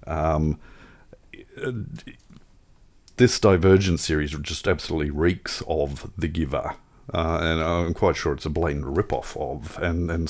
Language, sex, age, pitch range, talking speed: English, male, 50-69, 80-105 Hz, 130 wpm